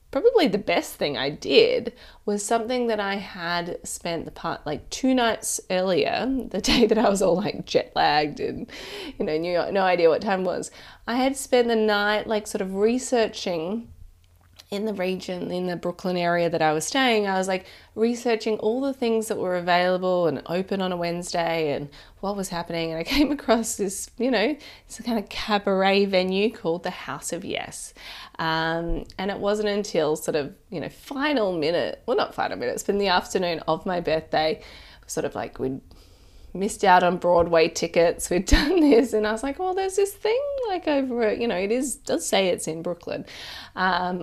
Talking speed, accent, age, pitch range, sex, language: 200 wpm, Australian, 20-39, 170-230 Hz, female, English